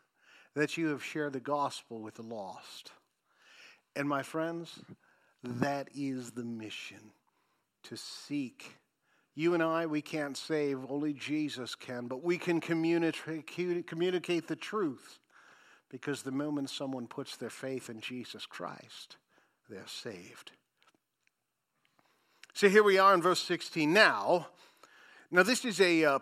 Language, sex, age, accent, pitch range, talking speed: English, male, 50-69, American, 140-185 Hz, 135 wpm